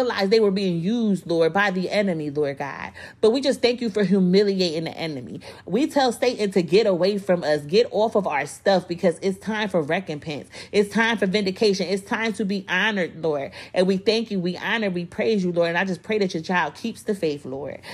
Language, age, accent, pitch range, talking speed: English, 30-49, American, 165-215 Hz, 230 wpm